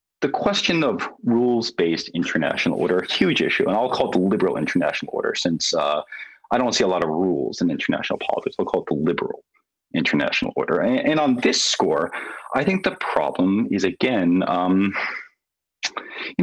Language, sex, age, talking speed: English, male, 30-49, 180 wpm